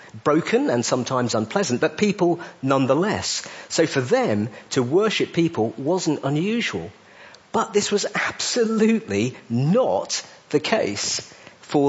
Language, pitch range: English, 140-220 Hz